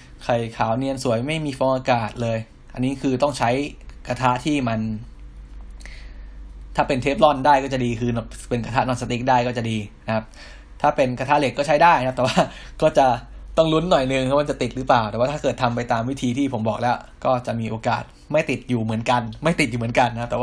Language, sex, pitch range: Thai, male, 110-130 Hz